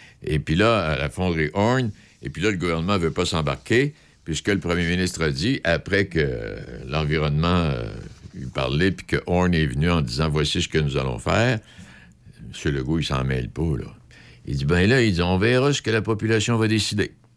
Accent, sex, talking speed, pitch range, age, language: French, male, 220 wpm, 80-115 Hz, 60-79, French